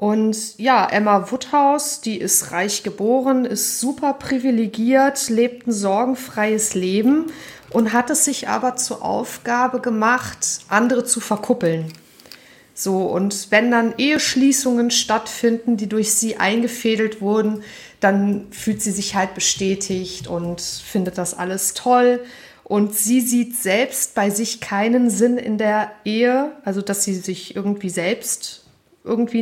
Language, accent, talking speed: German, German, 135 wpm